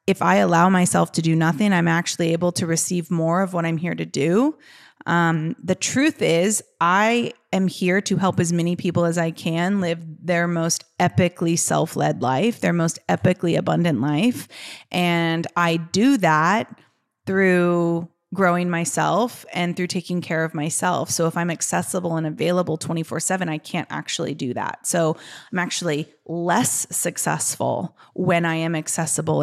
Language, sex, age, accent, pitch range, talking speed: English, female, 30-49, American, 165-185 Hz, 165 wpm